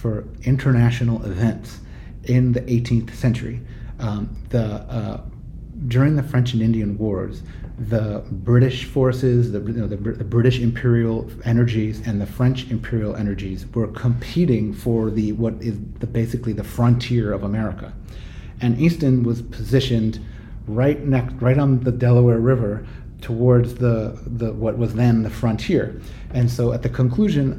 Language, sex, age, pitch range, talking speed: English, male, 30-49, 110-125 Hz, 150 wpm